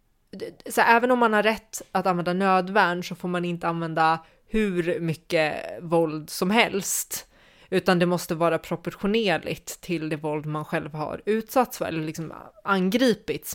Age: 20-39